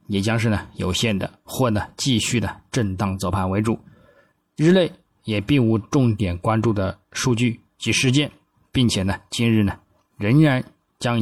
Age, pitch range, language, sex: 20-39, 100-125 Hz, Chinese, male